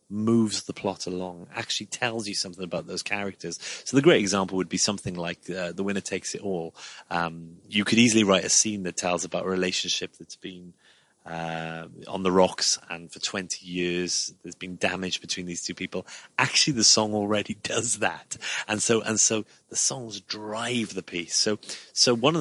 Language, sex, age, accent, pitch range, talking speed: English, male, 30-49, British, 90-110 Hz, 195 wpm